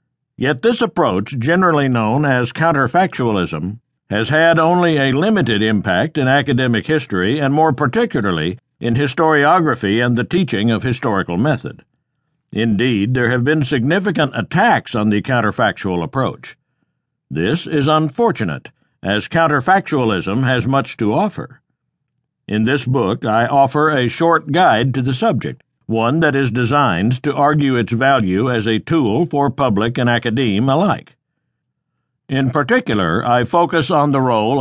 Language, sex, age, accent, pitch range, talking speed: English, male, 60-79, American, 120-155 Hz, 140 wpm